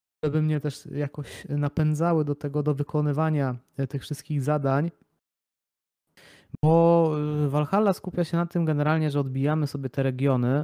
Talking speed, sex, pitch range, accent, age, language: 135 wpm, male, 120-145 Hz, native, 20-39, Polish